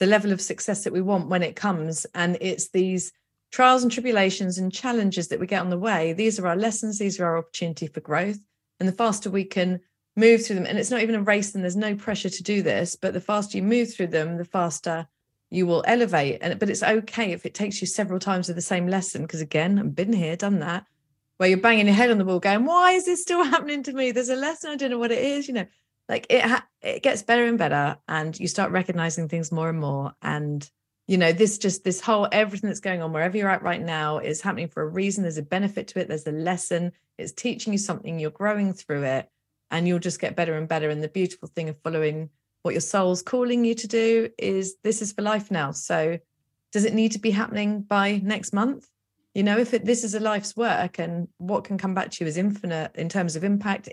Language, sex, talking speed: English, female, 250 wpm